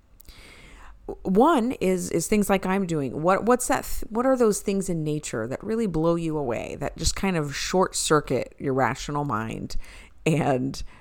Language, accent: English, American